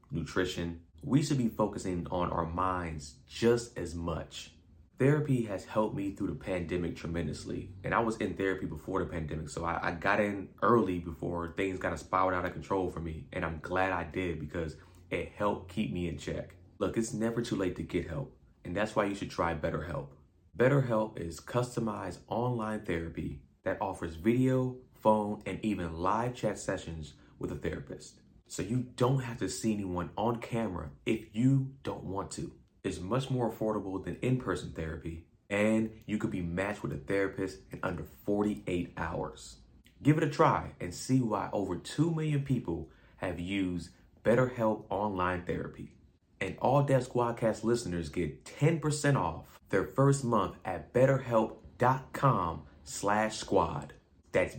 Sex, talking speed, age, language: male, 165 wpm, 30-49, English